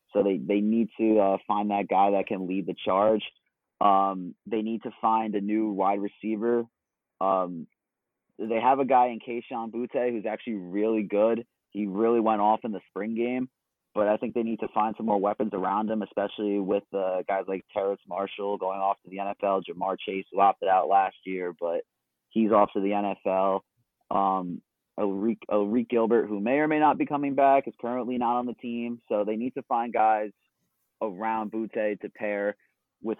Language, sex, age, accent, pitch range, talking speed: English, male, 30-49, American, 100-120 Hz, 200 wpm